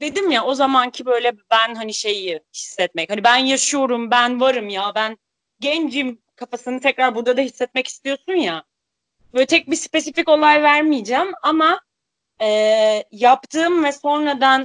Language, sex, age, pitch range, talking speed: Turkish, female, 30-49, 225-285 Hz, 145 wpm